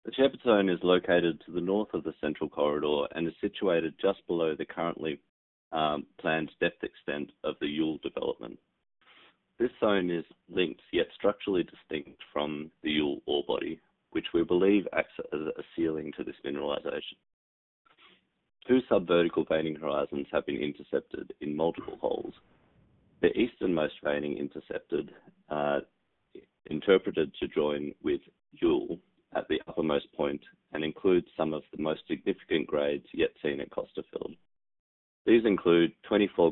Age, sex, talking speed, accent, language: 30-49, male, 145 wpm, Australian, English